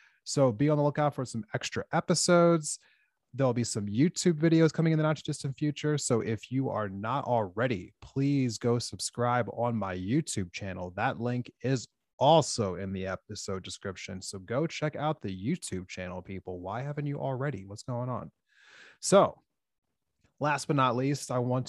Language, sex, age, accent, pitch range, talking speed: English, male, 30-49, American, 110-145 Hz, 175 wpm